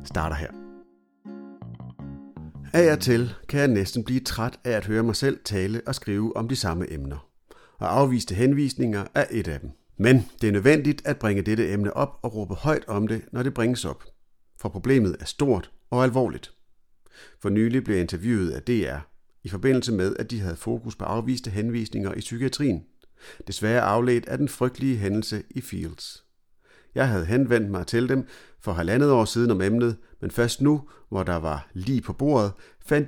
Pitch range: 95-130 Hz